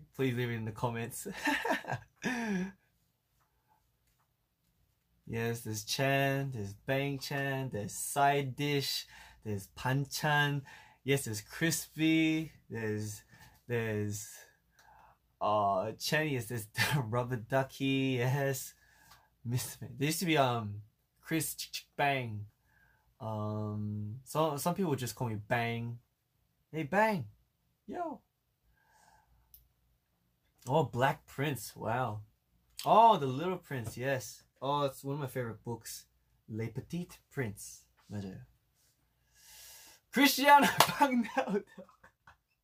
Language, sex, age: Korean, male, 20-39